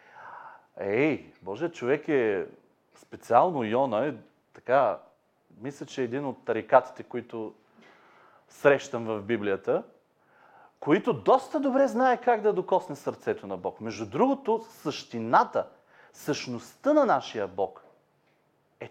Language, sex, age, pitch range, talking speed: Bulgarian, male, 40-59, 125-205 Hz, 115 wpm